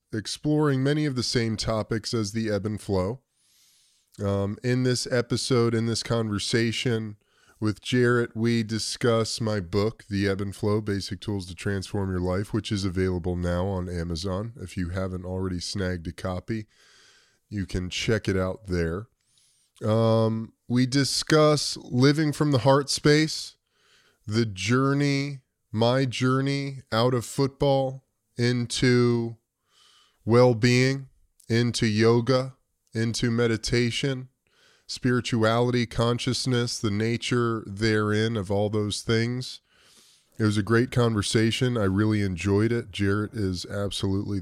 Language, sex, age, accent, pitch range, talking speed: English, male, 20-39, American, 100-125 Hz, 130 wpm